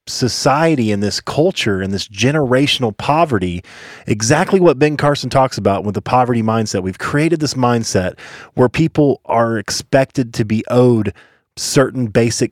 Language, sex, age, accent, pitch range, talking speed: English, male, 30-49, American, 105-140 Hz, 145 wpm